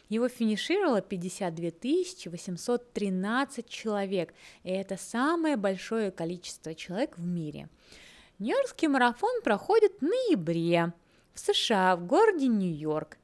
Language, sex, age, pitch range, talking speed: Russian, female, 20-39, 175-270 Hz, 105 wpm